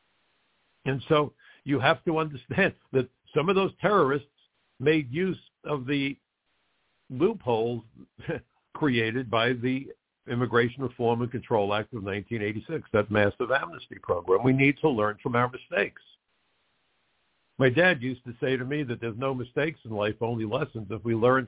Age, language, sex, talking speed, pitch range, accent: 60-79, English, male, 155 wpm, 115-140 Hz, American